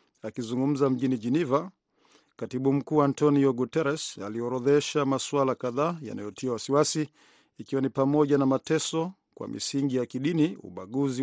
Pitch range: 130-150 Hz